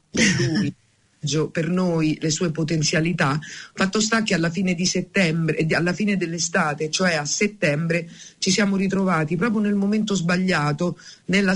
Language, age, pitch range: Italian, 50-69, 155-185 Hz